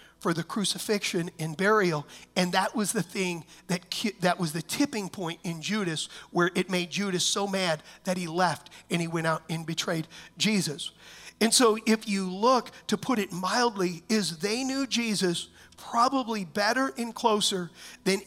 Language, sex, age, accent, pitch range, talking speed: English, male, 50-69, American, 180-225 Hz, 170 wpm